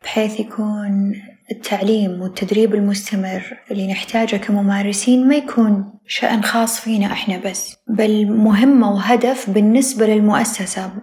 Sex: female